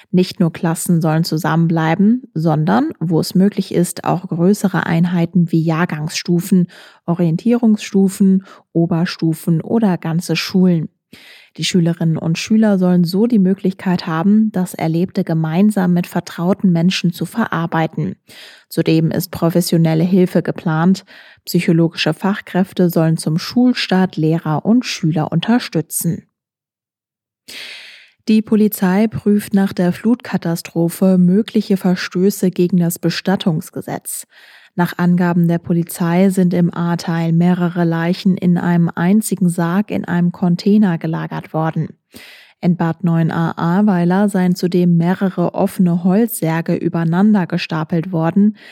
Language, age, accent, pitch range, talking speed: German, 20-39, German, 165-195 Hz, 110 wpm